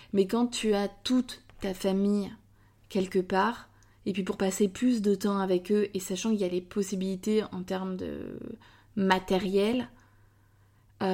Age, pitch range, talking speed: 20-39, 180-205 Hz, 160 wpm